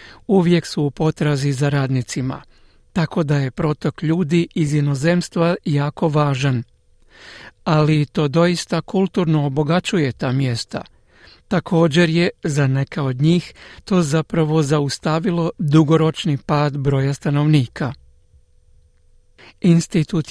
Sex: male